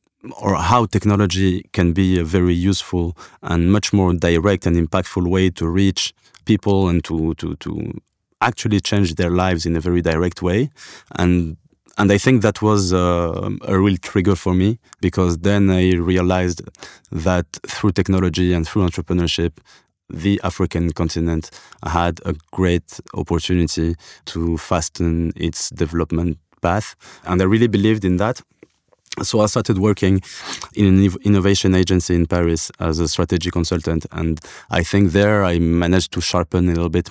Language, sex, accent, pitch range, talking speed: English, male, French, 85-95 Hz, 155 wpm